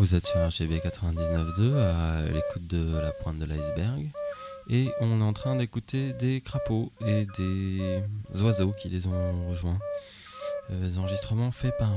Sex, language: male, English